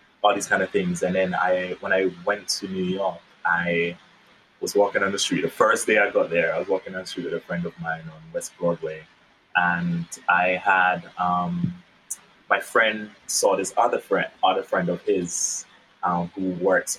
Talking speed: 200 wpm